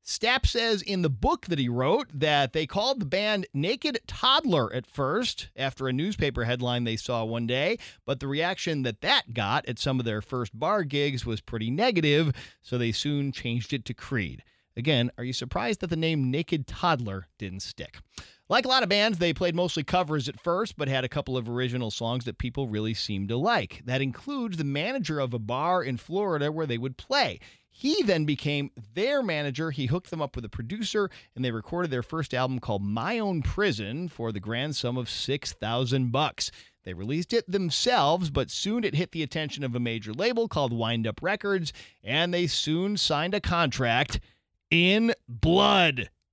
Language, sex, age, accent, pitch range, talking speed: English, male, 40-59, American, 120-170 Hz, 195 wpm